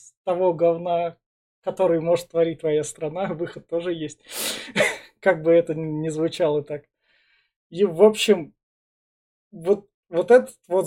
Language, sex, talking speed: Russian, male, 125 wpm